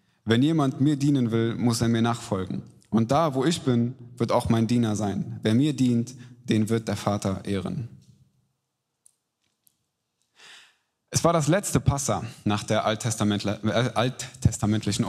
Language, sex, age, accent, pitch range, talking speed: German, male, 20-39, German, 110-145 Hz, 145 wpm